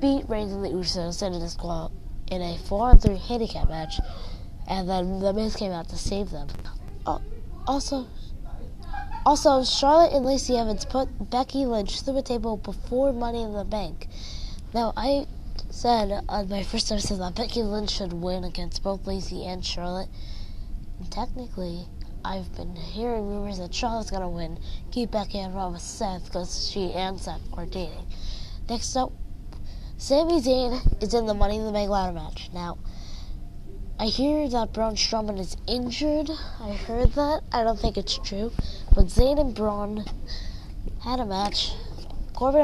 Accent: American